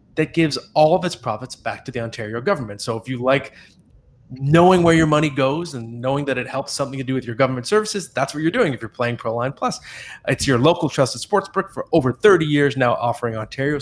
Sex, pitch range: male, 120-165 Hz